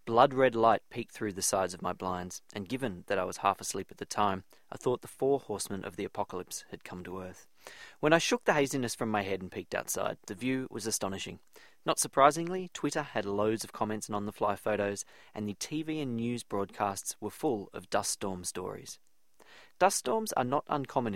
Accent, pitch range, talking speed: Australian, 100-130 Hz, 205 wpm